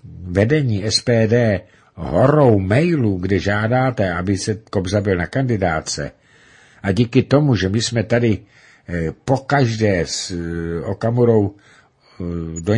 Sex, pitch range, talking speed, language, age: male, 95-120 Hz, 110 wpm, Czech, 60-79